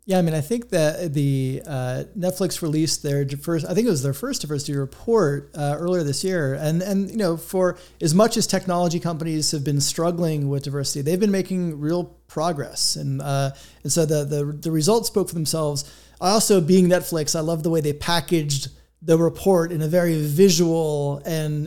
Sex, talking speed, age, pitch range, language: male, 195 wpm, 30-49, 155-195 Hz, English